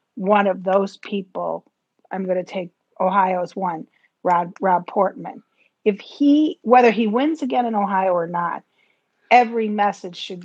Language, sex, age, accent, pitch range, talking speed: English, female, 50-69, American, 190-245 Hz, 150 wpm